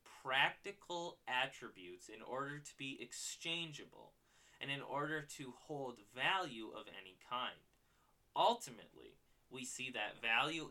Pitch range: 115-145 Hz